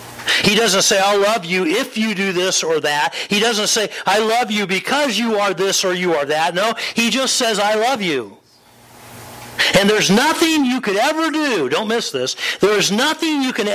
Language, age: English, 50-69